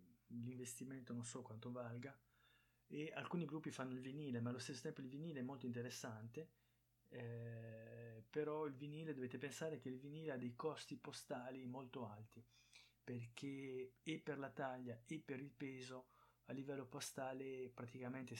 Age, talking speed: 20-39, 155 wpm